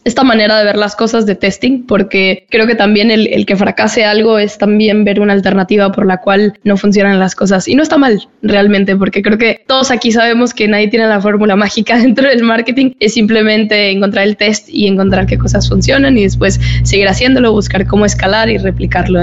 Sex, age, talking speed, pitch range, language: female, 10-29, 210 wpm, 200-230 Hz, Spanish